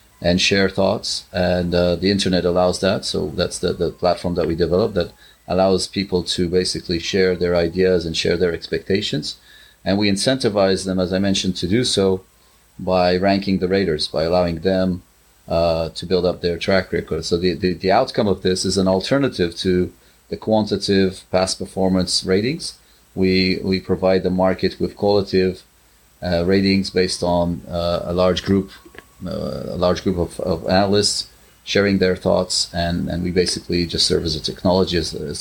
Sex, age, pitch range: male, 30-49, 85-95 Hz